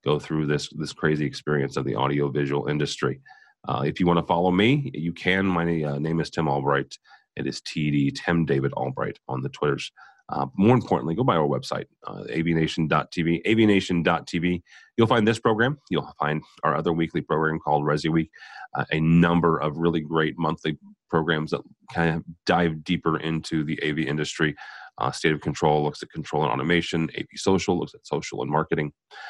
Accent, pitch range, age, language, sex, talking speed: American, 75-90 Hz, 30-49, English, male, 180 wpm